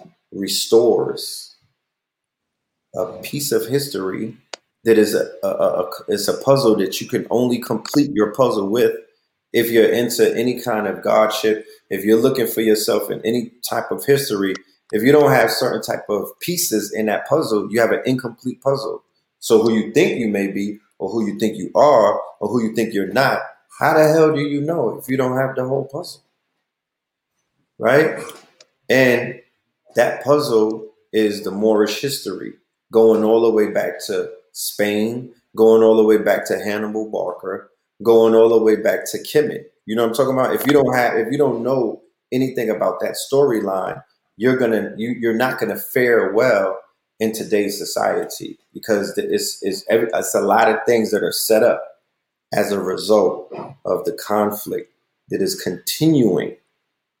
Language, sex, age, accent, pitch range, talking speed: English, male, 30-49, American, 110-140 Hz, 175 wpm